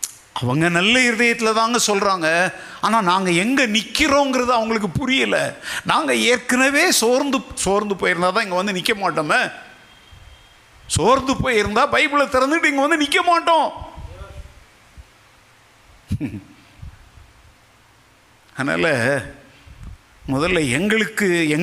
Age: 50-69